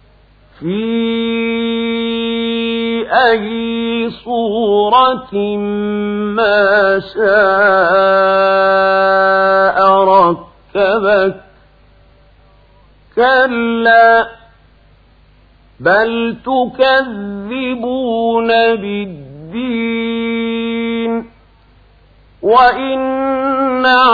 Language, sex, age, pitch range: Arabic, male, 50-69, 195-235 Hz